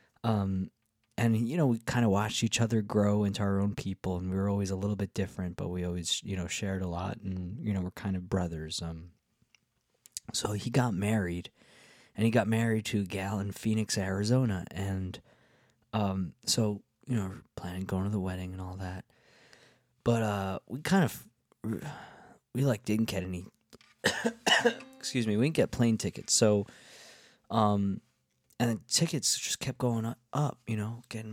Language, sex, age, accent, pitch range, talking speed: English, male, 20-39, American, 95-115 Hz, 180 wpm